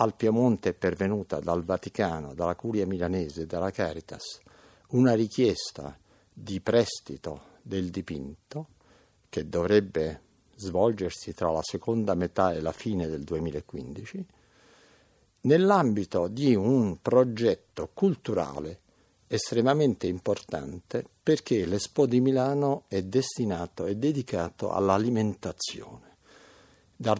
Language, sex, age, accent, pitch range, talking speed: Italian, male, 60-79, native, 90-115 Hz, 105 wpm